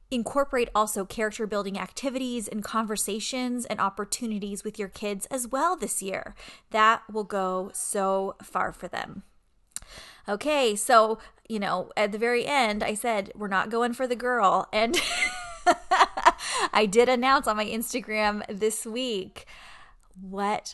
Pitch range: 205-245 Hz